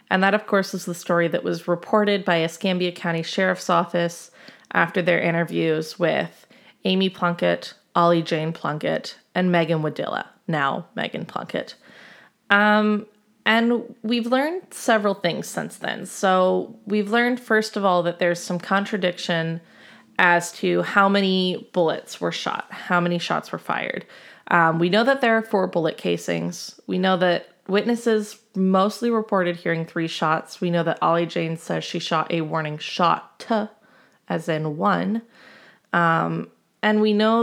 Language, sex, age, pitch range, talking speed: English, female, 20-39, 170-210 Hz, 155 wpm